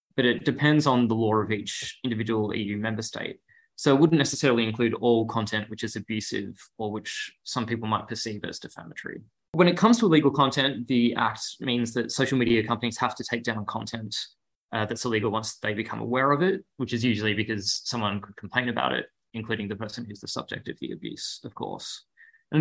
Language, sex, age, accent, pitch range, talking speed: English, male, 20-39, Australian, 105-130 Hz, 205 wpm